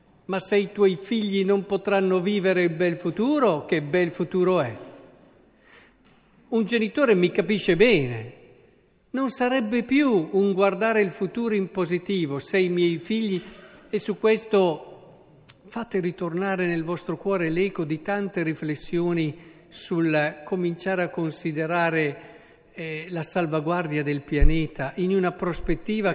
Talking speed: 130 wpm